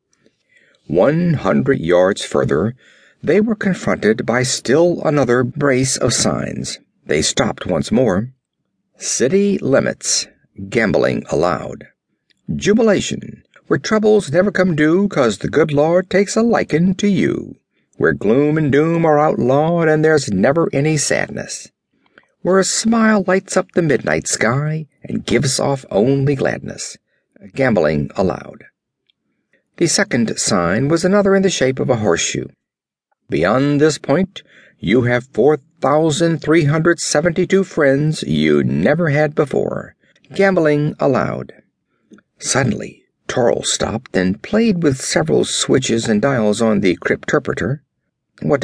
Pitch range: 135-185 Hz